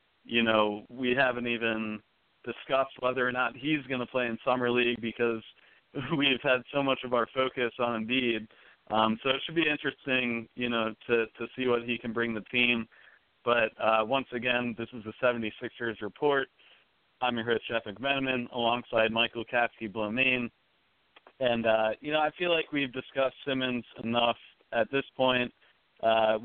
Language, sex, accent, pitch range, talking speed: English, male, American, 115-130 Hz, 170 wpm